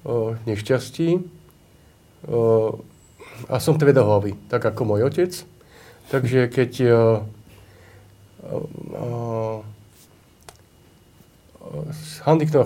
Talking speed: 50 wpm